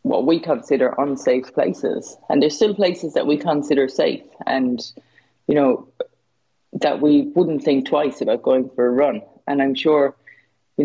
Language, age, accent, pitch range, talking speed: English, 30-49, Irish, 135-165 Hz, 165 wpm